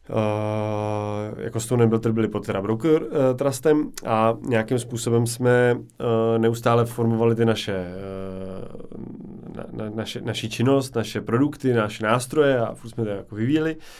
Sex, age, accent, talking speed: male, 30-49, native, 155 wpm